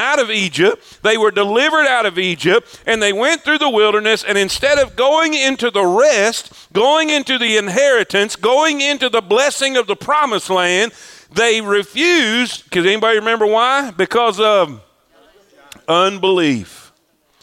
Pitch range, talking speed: 210-285 Hz, 150 wpm